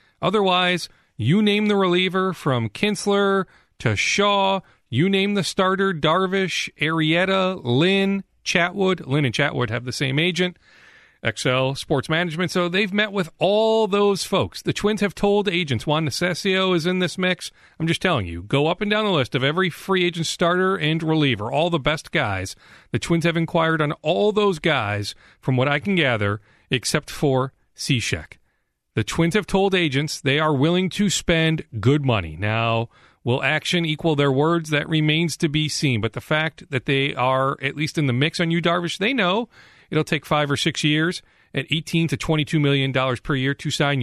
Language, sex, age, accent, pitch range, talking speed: English, male, 40-59, American, 135-180 Hz, 185 wpm